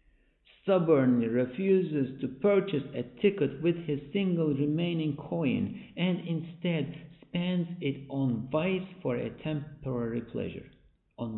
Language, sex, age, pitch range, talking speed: English, male, 50-69, 105-155 Hz, 115 wpm